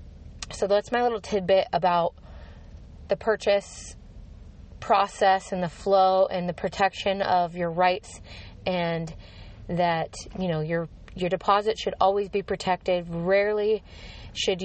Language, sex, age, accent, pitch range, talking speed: English, female, 20-39, American, 165-195 Hz, 125 wpm